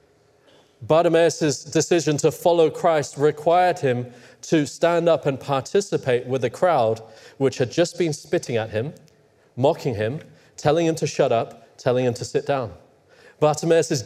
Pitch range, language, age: 130-170 Hz, English, 30-49